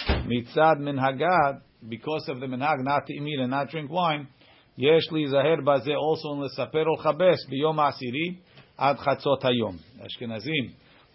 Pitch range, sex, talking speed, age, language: 125-150 Hz, male, 145 wpm, 50-69, English